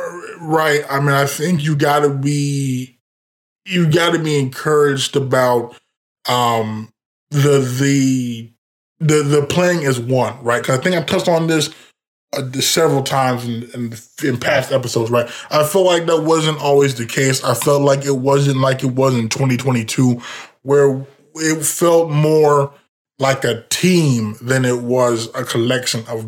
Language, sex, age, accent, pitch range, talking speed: English, male, 20-39, American, 125-150 Hz, 165 wpm